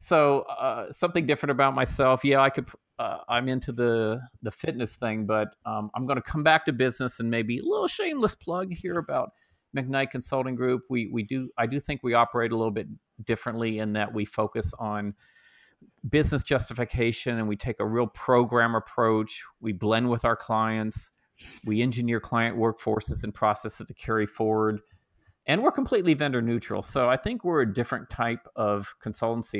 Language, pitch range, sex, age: English, 105-125 Hz, male, 40-59